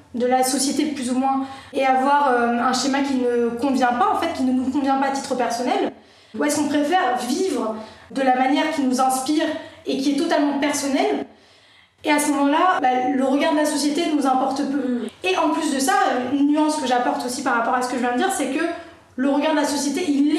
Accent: French